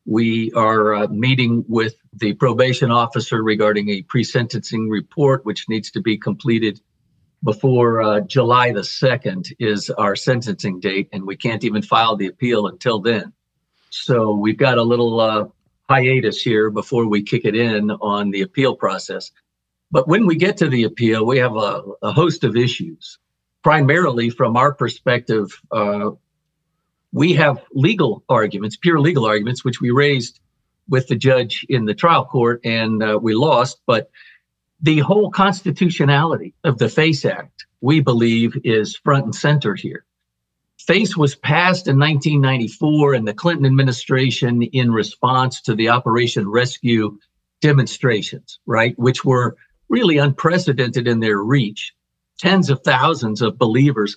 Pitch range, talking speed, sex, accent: 110-140 Hz, 150 wpm, male, American